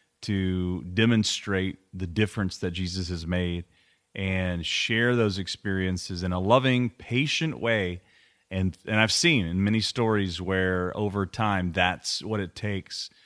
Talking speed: 140 wpm